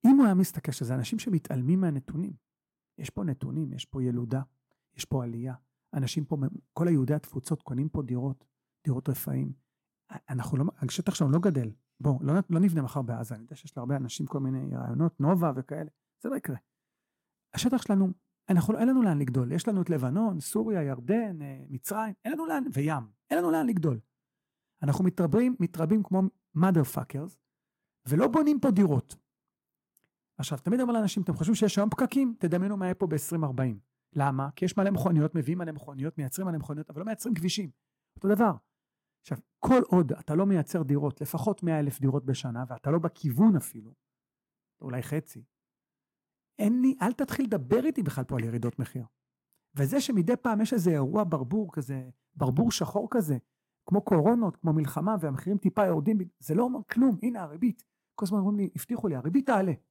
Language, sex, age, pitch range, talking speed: Hebrew, male, 40-59, 135-205 Hz, 150 wpm